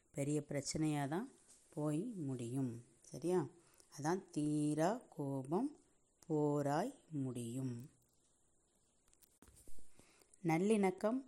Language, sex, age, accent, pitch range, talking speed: Tamil, female, 30-49, native, 140-175 Hz, 65 wpm